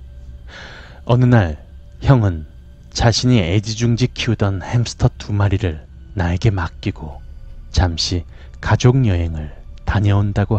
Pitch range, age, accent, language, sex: 75-110 Hz, 30-49, native, Korean, male